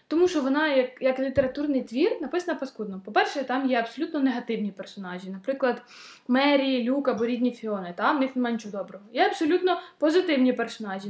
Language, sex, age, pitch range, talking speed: Ukrainian, female, 20-39, 235-290 Hz, 170 wpm